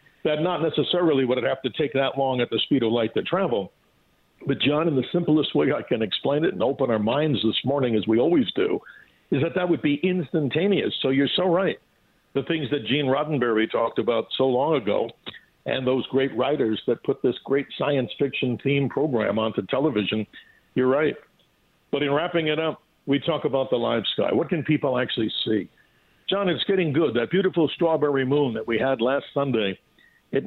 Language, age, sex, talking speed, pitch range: English, 60-79, male, 200 wpm, 130-160 Hz